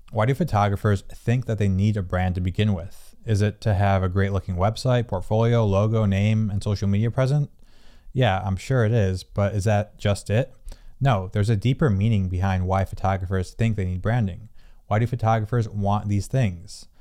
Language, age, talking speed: English, 20-39, 195 wpm